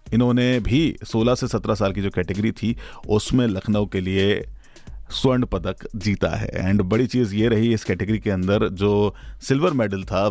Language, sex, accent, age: Hindi, male, native, 40-59